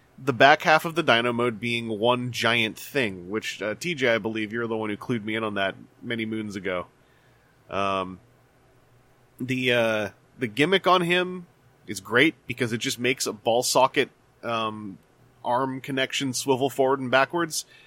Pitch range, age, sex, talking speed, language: 120-150 Hz, 20-39, male, 170 wpm, English